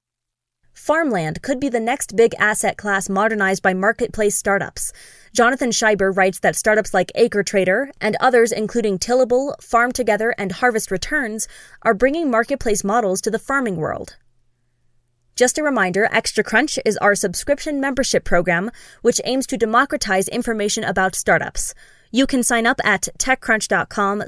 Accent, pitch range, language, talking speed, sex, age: American, 195-250 Hz, English, 145 wpm, female, 20-39